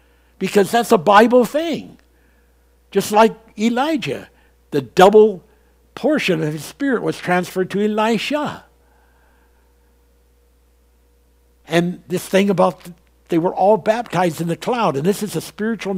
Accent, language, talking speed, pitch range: American, English, 130 wpm, 130-195 Hz